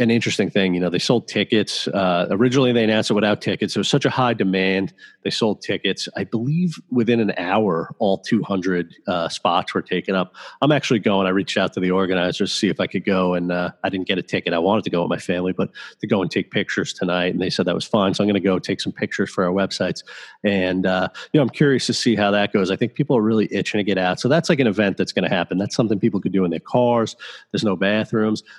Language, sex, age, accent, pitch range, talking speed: English, male, 30-49, American, 95-115 Hz, 270 wpm